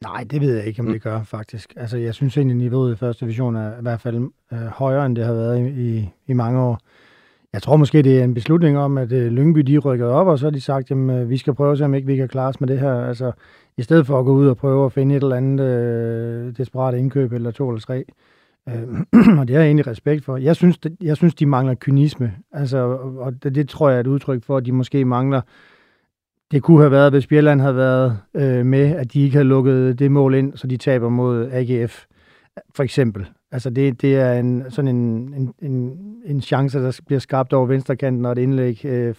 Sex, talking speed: male, 240 wpm